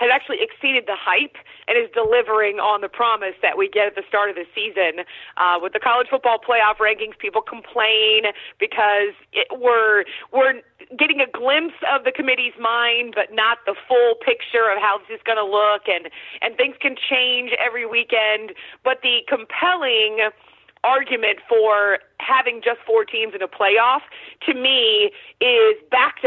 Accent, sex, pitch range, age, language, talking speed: American, female, 210-265 Hz, 30-49, English, 170 wpm